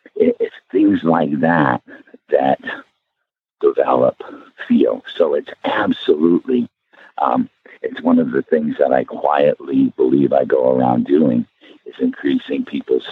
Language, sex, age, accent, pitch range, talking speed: English, male, 60-79, American, 255-410 Hz, 125 wpm